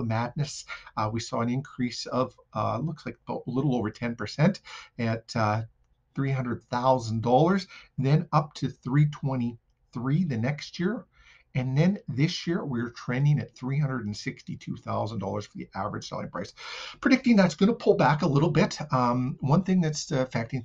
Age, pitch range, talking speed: 50-69, 115-150 Hz, 150 wpm